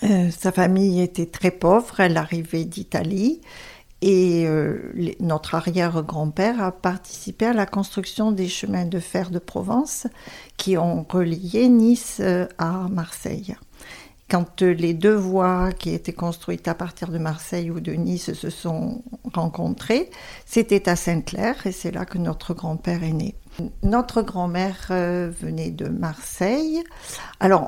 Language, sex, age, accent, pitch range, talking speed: French, female, 50-69, French, 170-200 Hz, 140 wpm